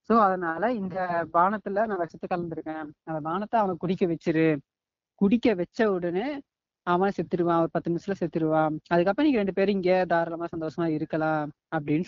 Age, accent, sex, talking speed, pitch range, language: 20-39, native, female, 150 wpm, 165-190 Hz, Tamil